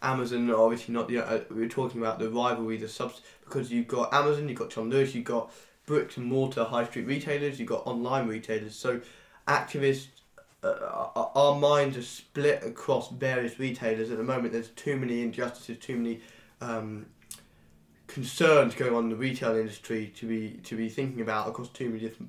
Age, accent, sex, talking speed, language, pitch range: 10-29, British, male, 185 wpm, English, 115-135 Hz